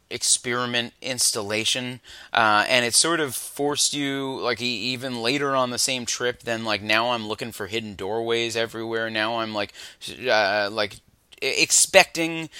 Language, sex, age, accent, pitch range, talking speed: English, male, 30-49, American, 110-140 Hz, 150 wpm